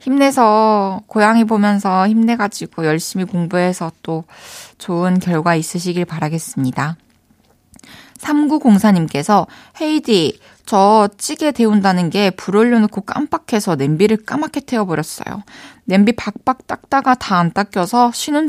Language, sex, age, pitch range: Korean, female, 20-39, 175-235 Hz